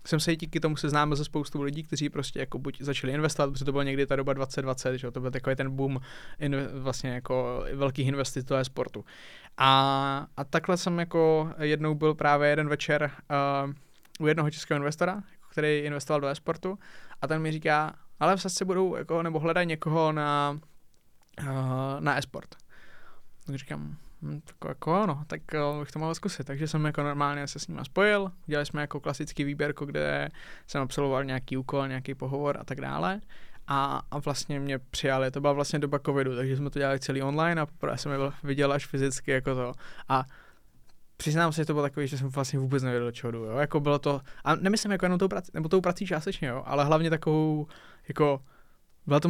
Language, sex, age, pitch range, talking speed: Czech, male, 20-39, 135-155 Hz, 200 wpm